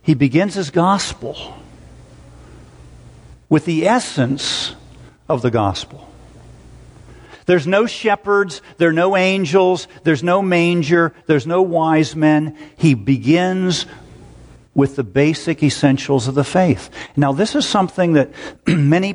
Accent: American